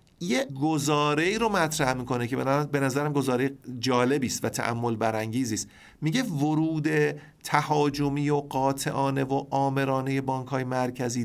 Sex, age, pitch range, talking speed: male, 50-69, 125-160 Hz, 125 wpm